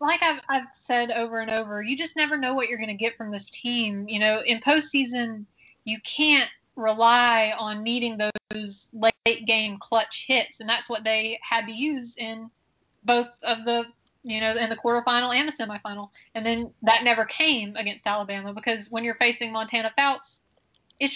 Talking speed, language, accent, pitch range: 185 wpm, English, American, 225-270 Hz